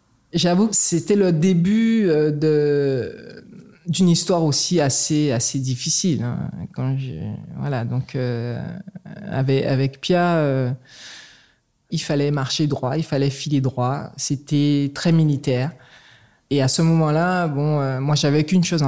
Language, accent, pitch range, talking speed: French, French, 140-170 Hz, 135 wpm